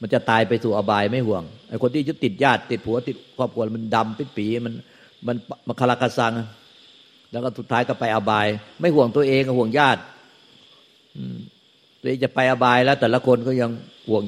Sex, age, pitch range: male, 60-79, 105-125 Hz